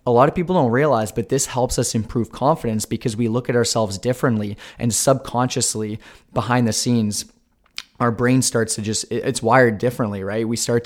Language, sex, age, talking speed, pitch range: English, male, 20-39, 190 wpm, 110-130 Hz